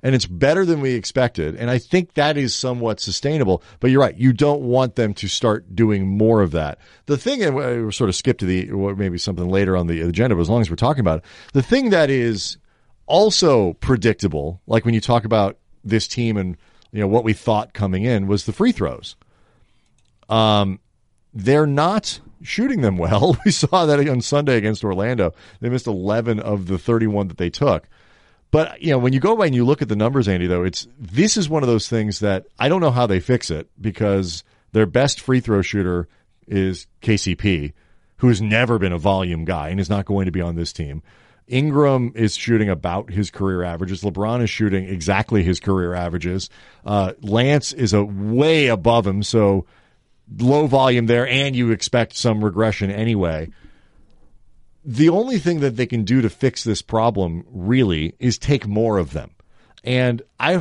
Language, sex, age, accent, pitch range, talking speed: English, male, 40-59, American, 100-130 Hz, 200 wpm